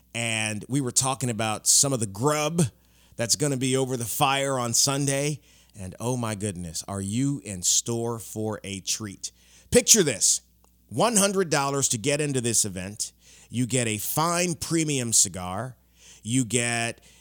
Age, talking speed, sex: 30-49, 155 wpm, male